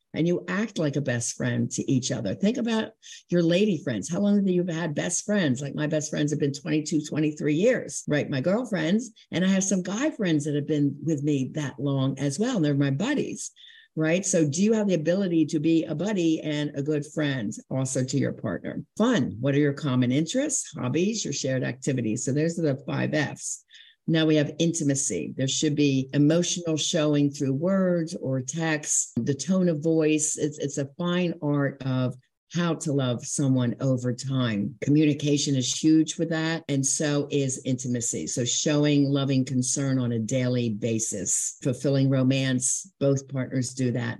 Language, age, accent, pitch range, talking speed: English, 50-69, American, 130-165 Hz, 190 wpm